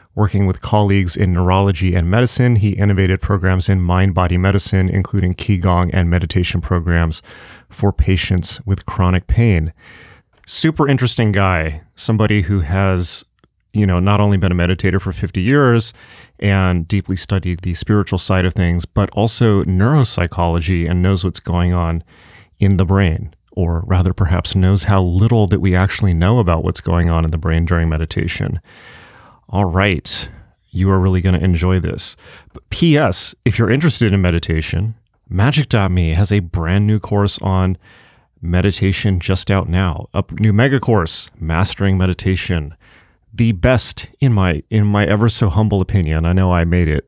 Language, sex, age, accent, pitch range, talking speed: English, male, 30-49, American, 90-105 Hz, 160 wpm